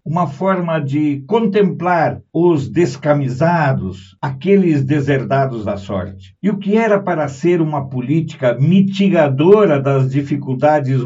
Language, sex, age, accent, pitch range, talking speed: Portuguese, male, 60-79, Brazilian, 135-175 Hz, 115 wpm